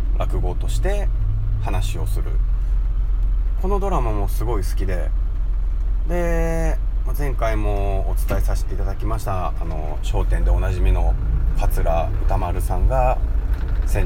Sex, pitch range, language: male, 85-105 Hz, Japanese